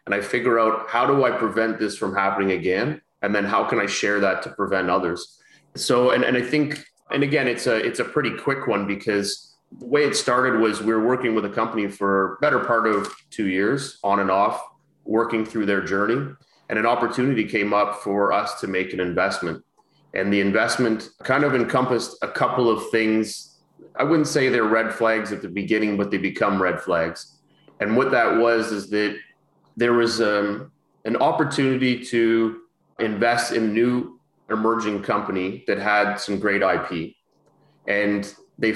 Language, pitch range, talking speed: English, 100-115 Hz, 185 wpm